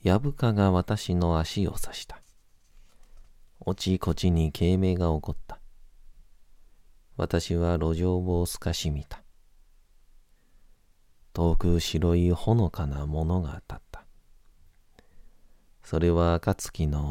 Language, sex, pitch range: Japanese, male, 80-100 Hz